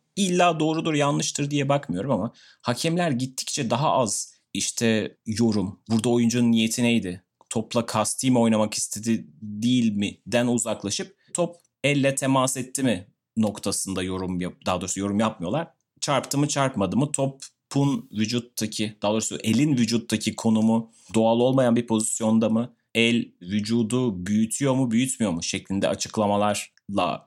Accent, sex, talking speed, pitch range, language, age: native, male, 130 wpm, 105-130 Hz, Turkish, 30-49